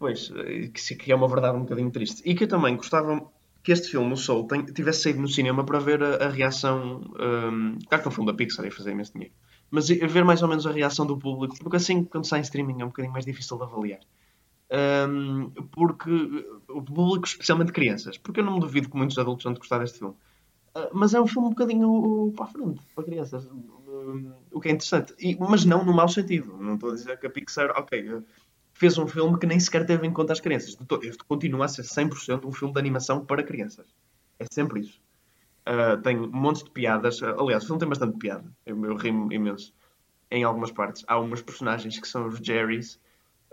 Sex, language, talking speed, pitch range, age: male, Portuguese, 225 wpm, 115-155 Hz, 20-39